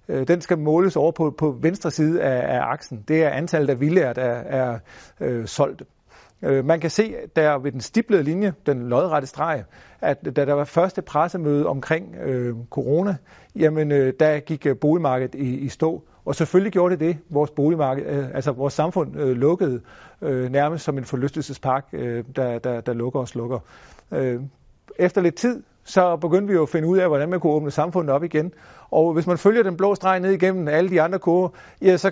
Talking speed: 200 wpm